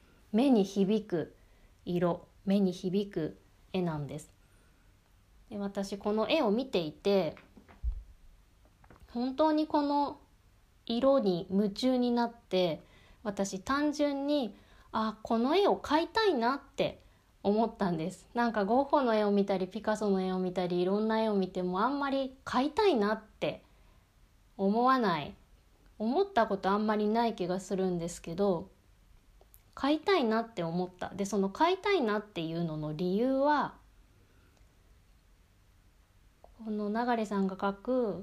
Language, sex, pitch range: Japanese, female, 165-240 Hz